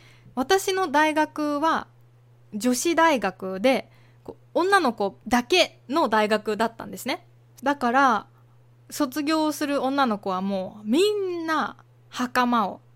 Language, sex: Japanese, female